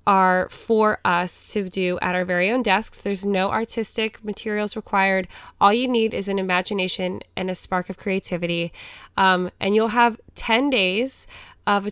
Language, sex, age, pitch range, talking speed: English, female, 20-39, 185-220 Hz, 165 wpm